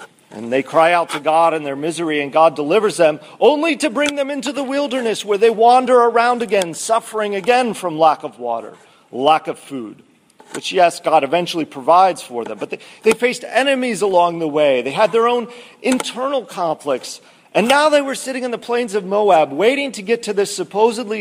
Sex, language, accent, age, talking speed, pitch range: male, English, American, 40-59, 200 wpm, 160-235 Hz